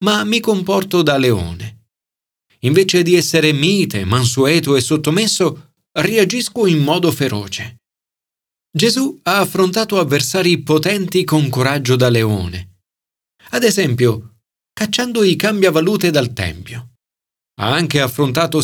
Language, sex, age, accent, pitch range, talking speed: Italian, male, 40-59, native, 115-180 Hz, 115 wpm